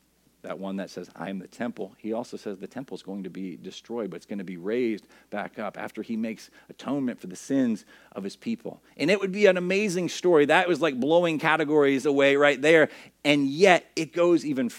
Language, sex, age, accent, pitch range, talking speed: English, male, 40-59, American, 115-170 Hz, 225 wpm